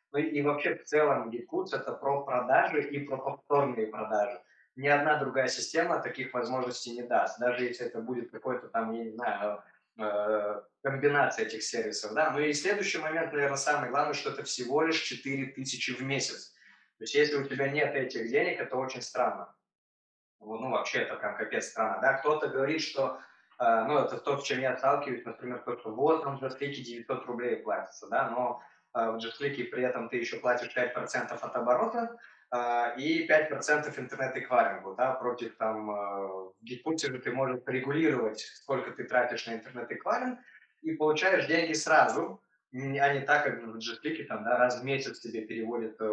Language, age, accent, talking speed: Russian, 20-39, native, 175 wpm